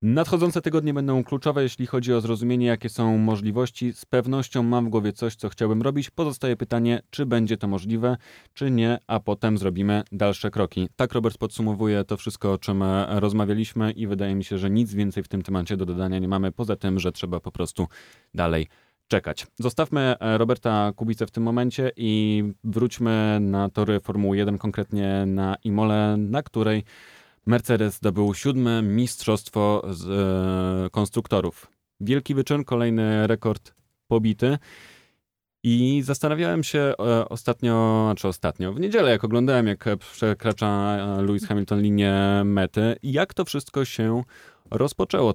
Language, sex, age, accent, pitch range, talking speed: Polish, male, 30-49, native, 95-120 Hz, 145 wpm